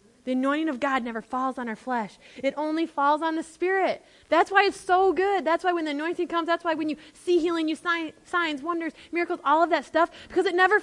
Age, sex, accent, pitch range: 20-39, female, American, 230-325 Hz